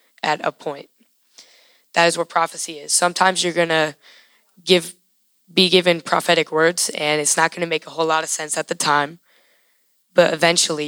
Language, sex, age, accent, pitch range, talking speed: English, female, 10-29, American, 155-195 Hz, 170 wpm